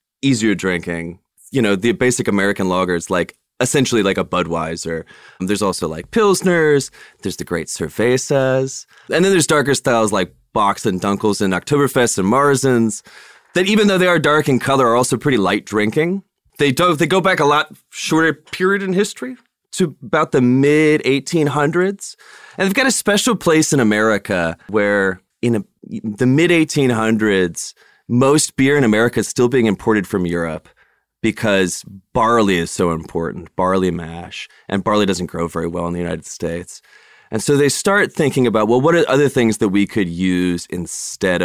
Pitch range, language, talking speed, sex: 95-150 Hz, English, 170 wpm, male